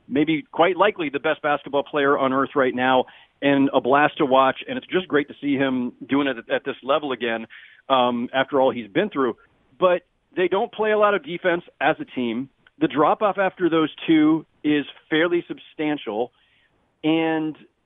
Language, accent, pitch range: English, American, 140-195 Hz